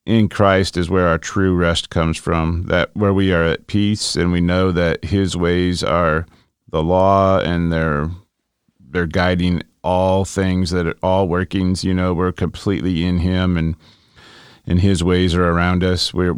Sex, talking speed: male, 175 wpm